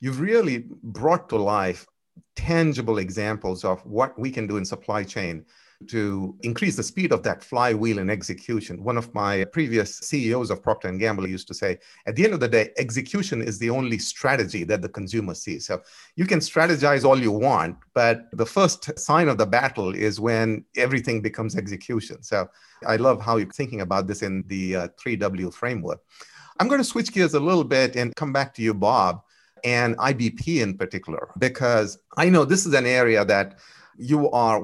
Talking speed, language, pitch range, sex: 190 wpm, English, 100-140 Hz, male